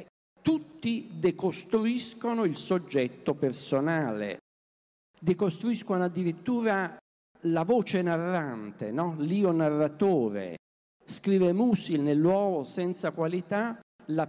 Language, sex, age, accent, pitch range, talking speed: Italian, male, 50-69, native, 145-200 Hz, 85 wpm